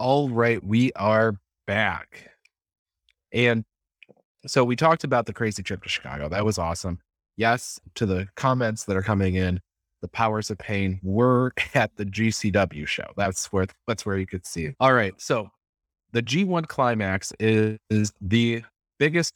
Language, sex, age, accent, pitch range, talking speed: English, male, 30-49, American, 95-115 Hz, 165 wpm